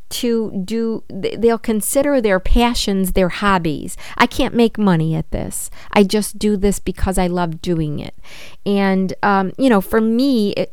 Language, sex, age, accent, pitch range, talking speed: English, female, 50-69, American, 170-205 Hz, 170 wpm